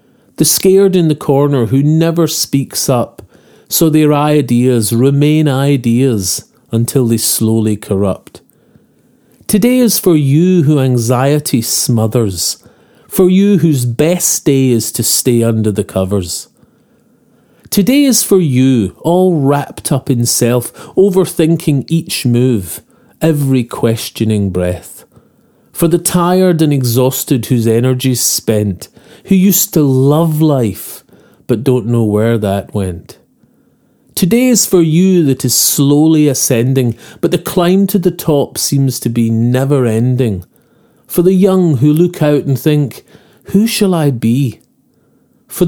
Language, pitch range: English, 120-170 Hz